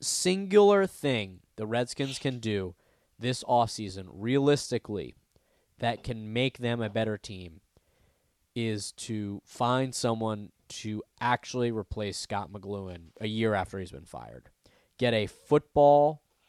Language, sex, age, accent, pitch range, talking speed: English, male, 20-39, American, 110-130 Hz, 125 wpm